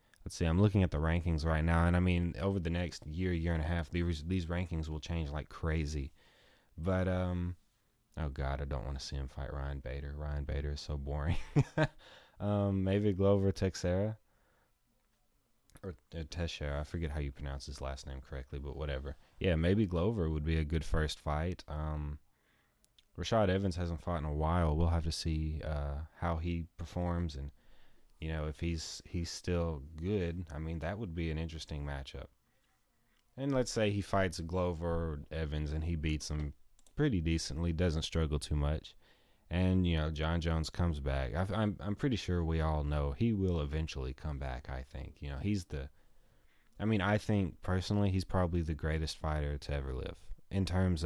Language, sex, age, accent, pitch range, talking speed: English, male, 20-39, American, 75-90 Hz, 190 wpm